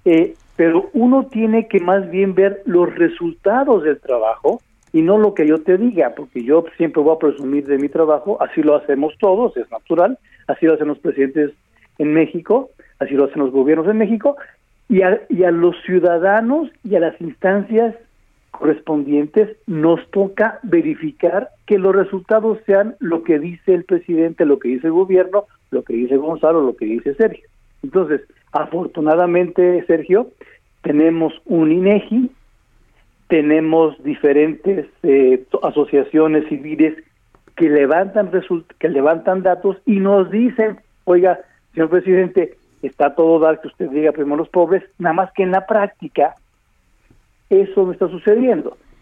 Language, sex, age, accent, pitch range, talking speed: Spanish, male, 50-69, Mexican, 155-205 Hz, 155 wpm